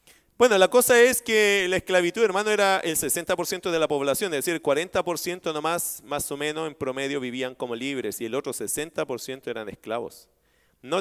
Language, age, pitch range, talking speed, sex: Spanish, 40-59, 145-190 Hz, 190 wpm, male